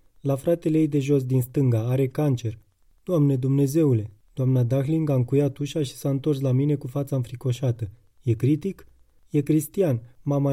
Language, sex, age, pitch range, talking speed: Romanian, male, 20-39, 125-150 Hz, 165 wpm